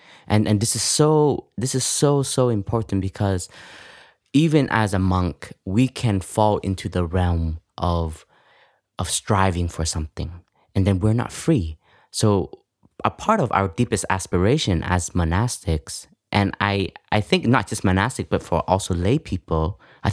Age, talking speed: 20-39, 160 wpm